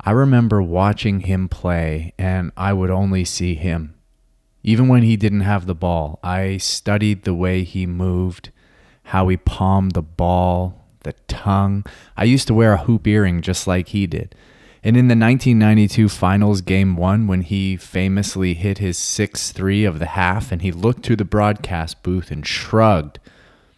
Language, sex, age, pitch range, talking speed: English, male, 30-49, 90-105 Hz, 170 wpm